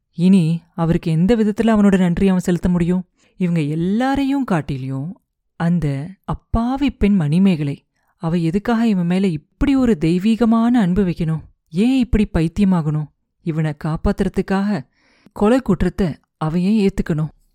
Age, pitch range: 30-49, 165-210 Hz